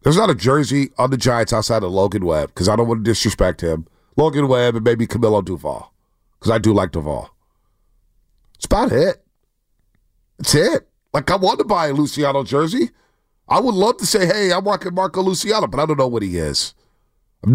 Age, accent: 40-59, American